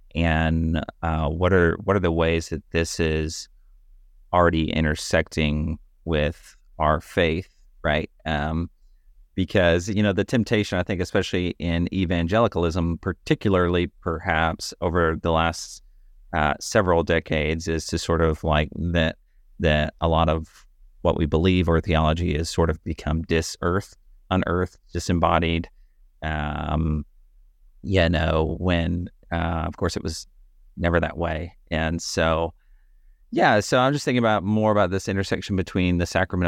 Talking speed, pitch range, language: 140 wpm, 80-90 Hz, English